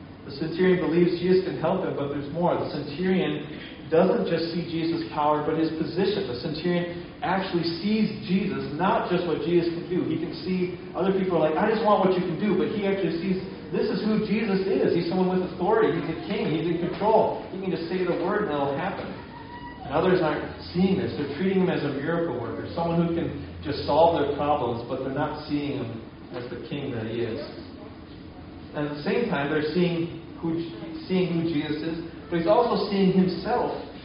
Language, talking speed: English, 215 wpm